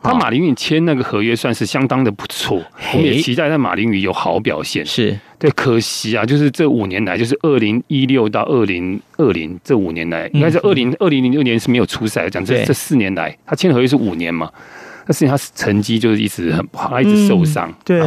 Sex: male